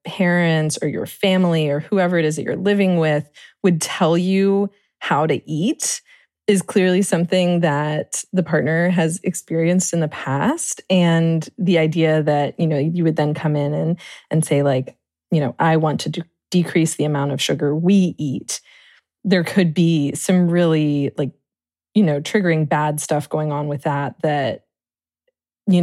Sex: female